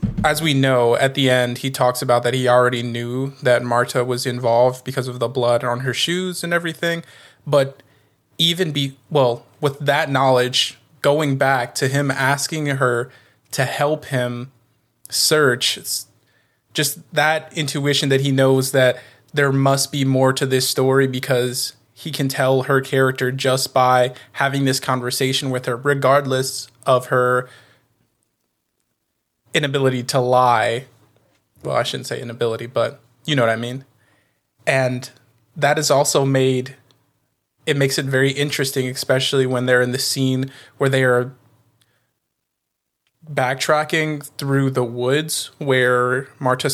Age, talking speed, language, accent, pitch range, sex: 20-39, 145 wpm, English, American, 125-140 Hz, male